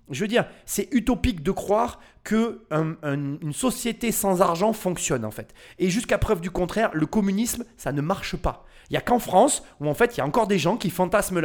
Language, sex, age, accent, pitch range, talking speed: French, male, 30-49, French, 140-215 Hz, 230 wpm